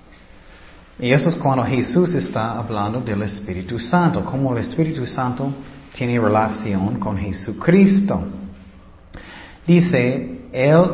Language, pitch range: Spanish, 110-160 Hz